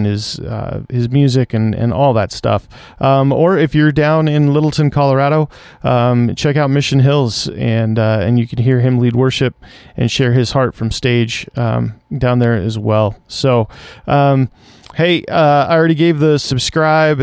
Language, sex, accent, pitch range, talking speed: English, male, American, 120-145 Hz, 180 wpm